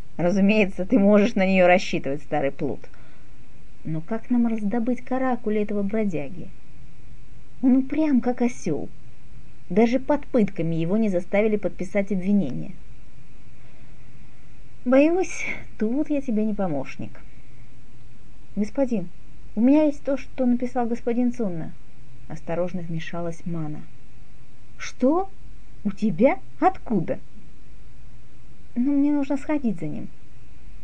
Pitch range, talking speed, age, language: 170-245 Hz, 105 wpm, 30-49, Russian